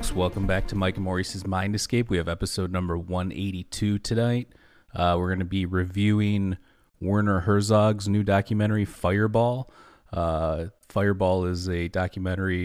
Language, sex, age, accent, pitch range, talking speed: English, male, 30-49, American, 90-105 Hz, 140 wpm